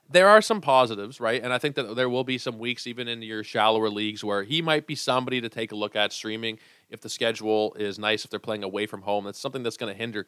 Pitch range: 100-120 Hz